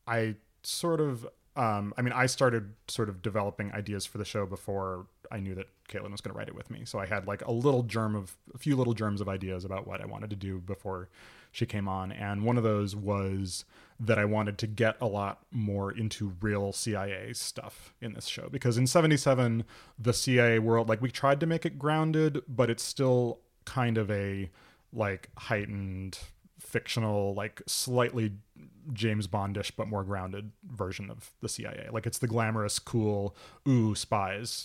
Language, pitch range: English, 100-120 Hz